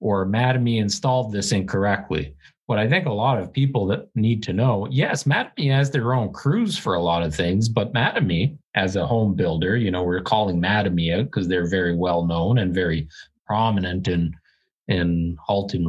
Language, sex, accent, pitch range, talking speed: English, male, American, 90-120 Hz, 190 wpm